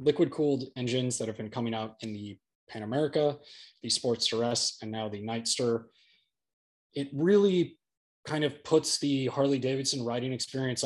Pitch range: 110-130 Hz